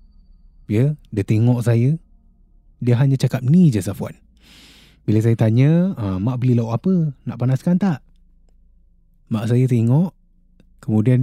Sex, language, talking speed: male, Malay, 130 wpm